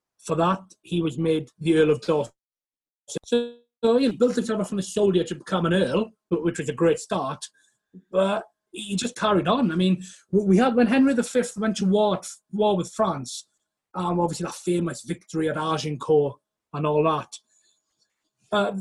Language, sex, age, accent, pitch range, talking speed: English, male, 30-49, British, 150-185 Hz, 185 wpm